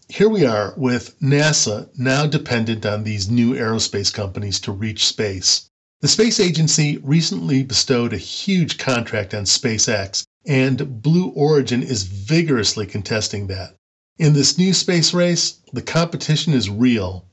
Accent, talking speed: American, 140 wpm